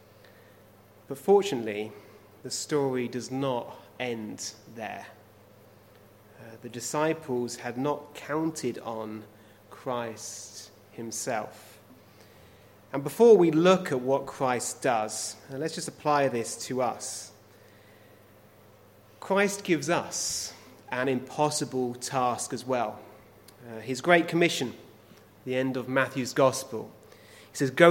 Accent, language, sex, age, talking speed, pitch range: British, English, male, 30-49, 110 wpm, 110-160 Hz